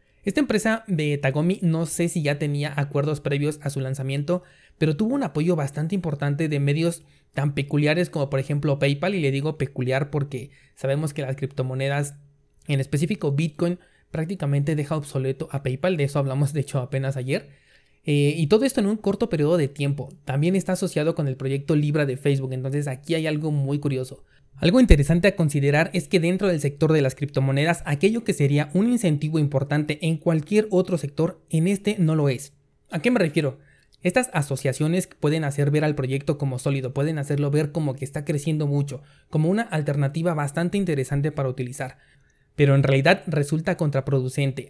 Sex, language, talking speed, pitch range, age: male, Spanish, 185 wpm, 140-165 Hz, 20-39